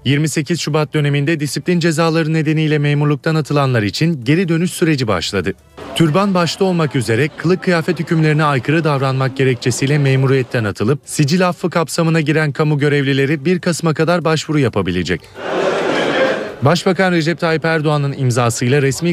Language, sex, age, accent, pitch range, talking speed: Turkish, male, 30-49, native, 140-170 Hz, 130 wpm